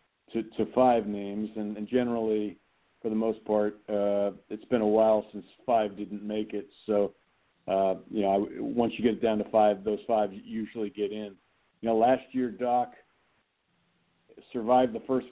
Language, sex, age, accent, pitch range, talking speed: English, male, 50-69, American, 105-125 Hz, 175 wpm